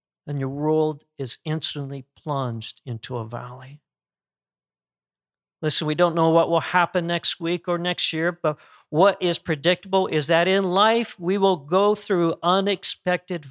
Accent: American